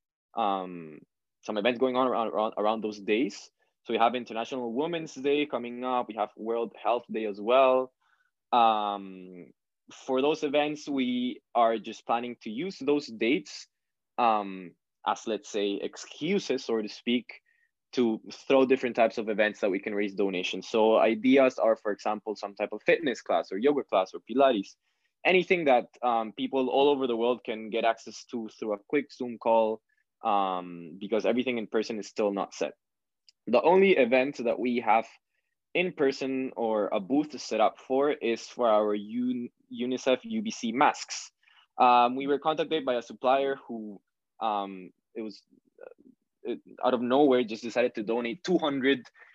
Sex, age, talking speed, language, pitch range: male, 20-39, 165 wpm, English, 110-135 Hz